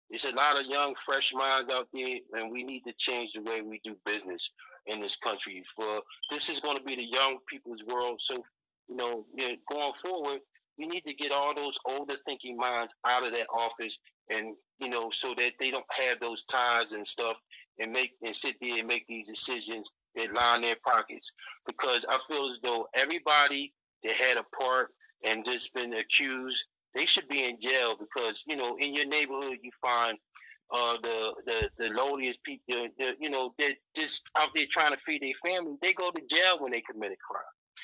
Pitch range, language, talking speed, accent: 120-175 Hz, English, 205 wpm, American